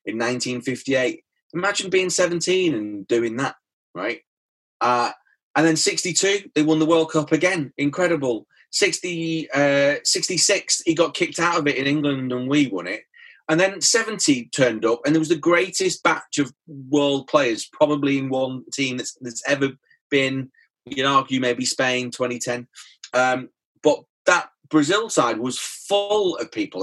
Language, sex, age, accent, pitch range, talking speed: English, male, 30-49, British, 130-165 Hz, 165 wpm